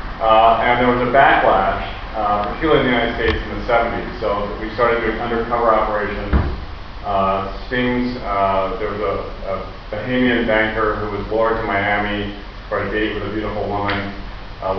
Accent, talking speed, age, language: American, 175 wpm, 40-59, Italian